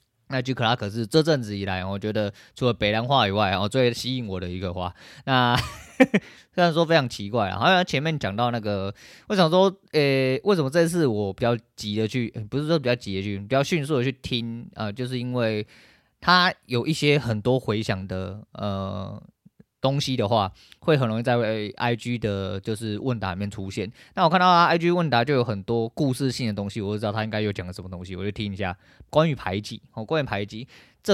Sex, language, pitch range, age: male, Chinese, 100-135 Hz, 20-39